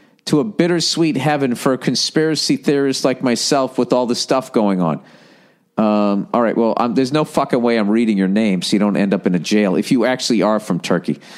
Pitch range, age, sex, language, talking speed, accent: 120-160 Hz, 50-69, male, English, 220 wpm, American